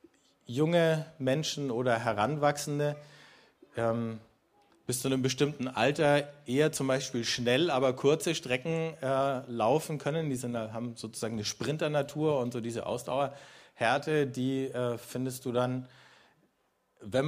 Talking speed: 125 wpm